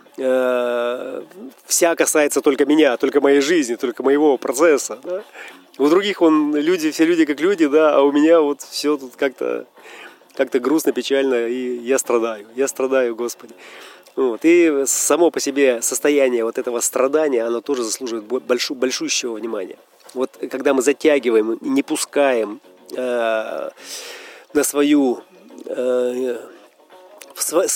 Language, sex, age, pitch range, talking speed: Russian, male, 30-49, 120-150 Hz, 130 wpm